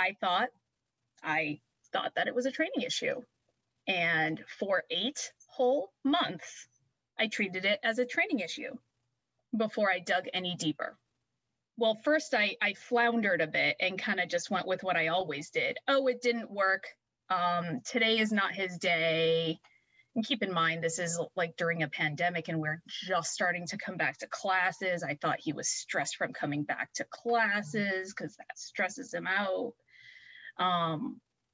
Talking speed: 170 wpm